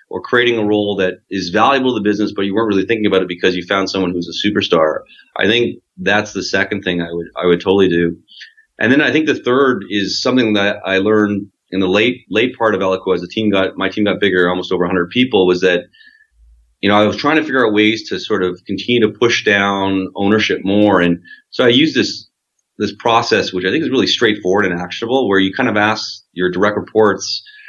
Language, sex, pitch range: English, male, 95-120 Hz